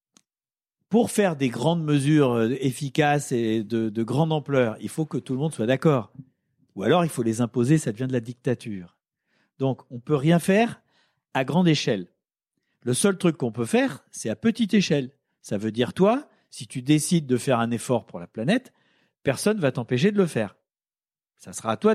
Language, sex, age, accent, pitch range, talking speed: French, male, 50-69, French, 130-195 Hz, 200 wpm